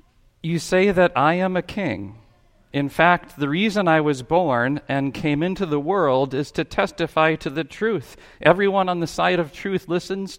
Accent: American